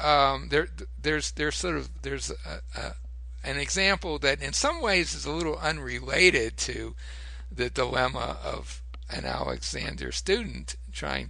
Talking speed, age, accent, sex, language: 145 wpm, 60-79, American, male, English